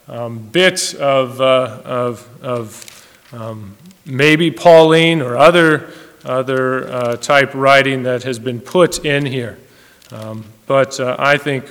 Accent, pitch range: American, 125-160 Hz